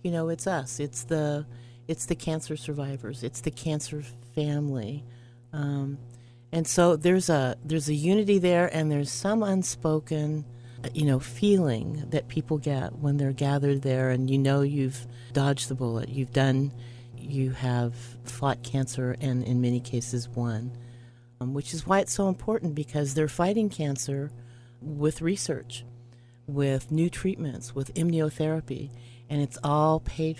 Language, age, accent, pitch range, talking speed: English, 40-59, American, 120-155 Hz, 150 wpm